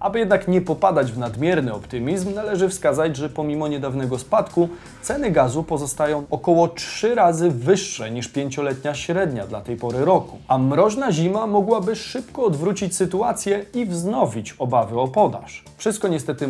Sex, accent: male, native